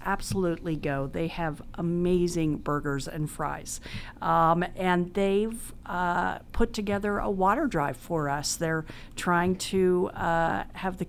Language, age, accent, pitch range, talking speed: English, 50-69, American, 155-195 Hz, 135 wpm